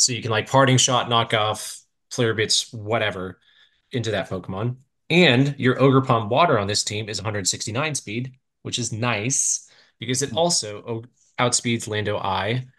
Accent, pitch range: American, 110-130 Hz